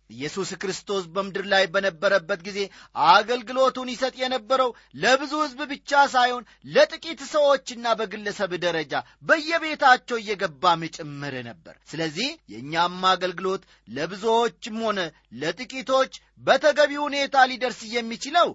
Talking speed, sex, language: 100 wpm, male, Amharic